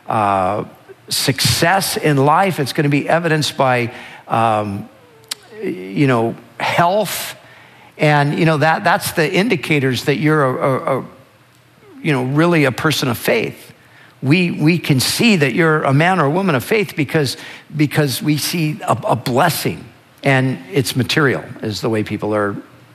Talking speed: 155 wpm